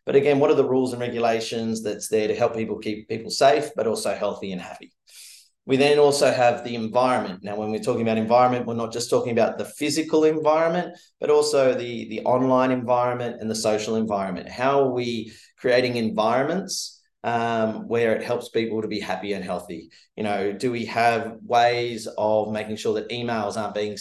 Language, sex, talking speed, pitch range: English, male, 195 wpm, 105-125 Hz